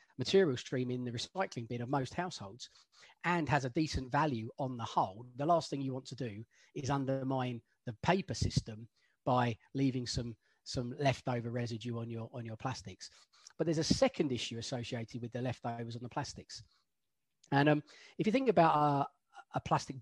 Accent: British